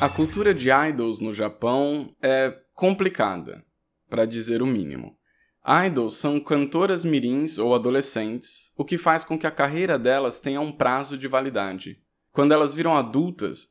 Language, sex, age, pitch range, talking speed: Portuguese, male, 10-29, 125-160 Hz, 155 wpm